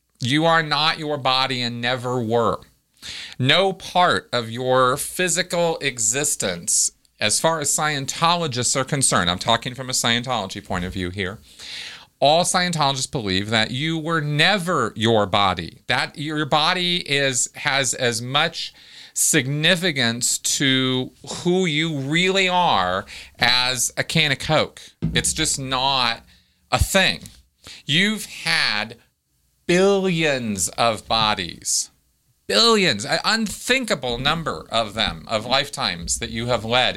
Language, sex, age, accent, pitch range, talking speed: English, male, 40-59, American, 120-170 Hz, 125 wpm